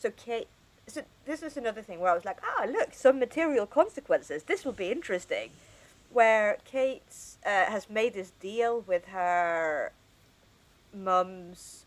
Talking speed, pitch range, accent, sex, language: 155 wpm, 170-235 Hz, British, female, English